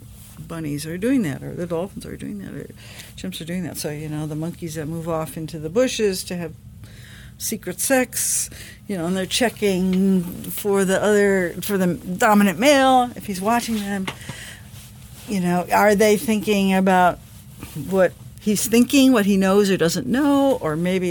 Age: 60-79